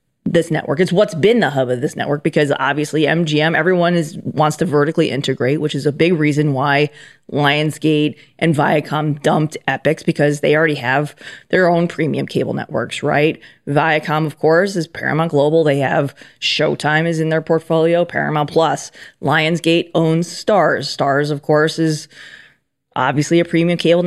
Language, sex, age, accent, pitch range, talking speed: English, female, 20-39, American, 145-165 Hz, 165 wpm